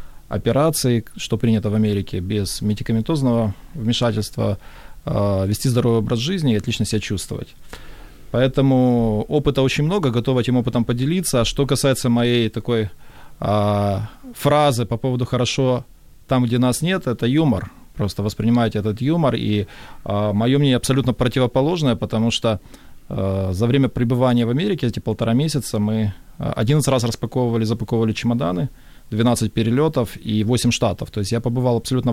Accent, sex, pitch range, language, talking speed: native, male, 110-130 Hz, Ukrainian, 145 wpm